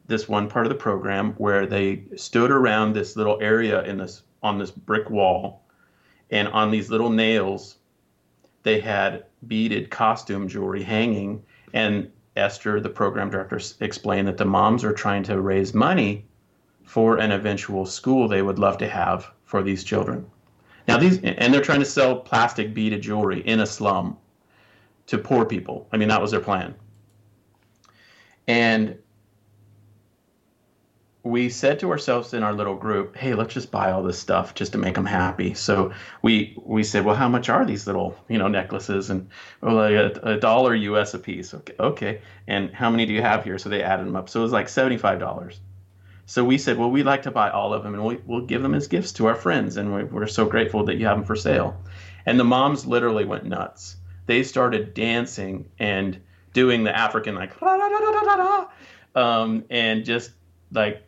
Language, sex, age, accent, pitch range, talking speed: English, male, 30-49, American, 100-115 Hz, 190 wpm